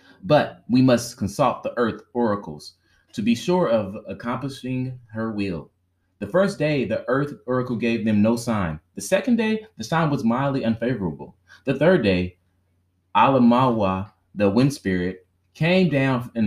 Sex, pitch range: male, 95-125 Hz